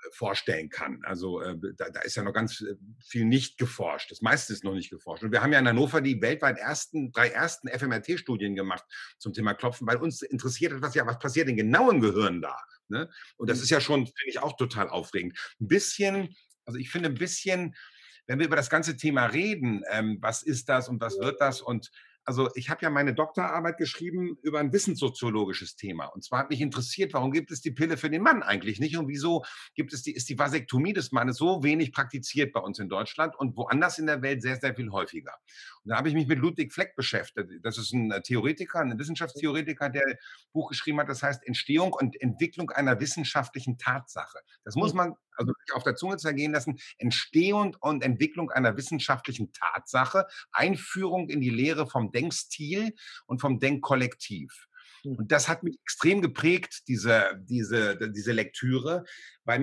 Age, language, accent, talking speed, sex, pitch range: 50-69, German, German, 195 wpm, male, 125-160 Hz